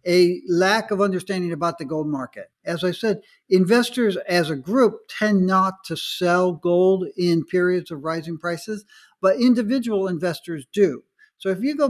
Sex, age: male, 60-79